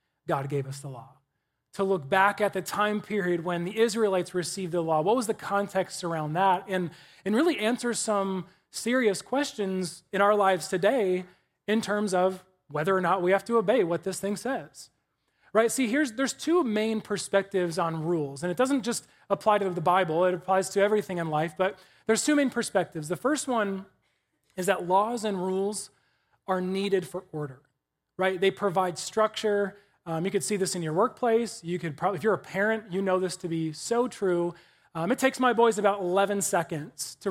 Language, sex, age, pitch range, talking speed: English, male, 30-49, 170-205 Hz, 200 wpm